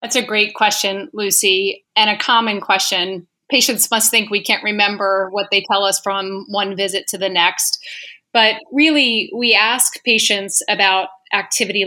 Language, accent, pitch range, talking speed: English, American, 195-230 Hz, 160 wpm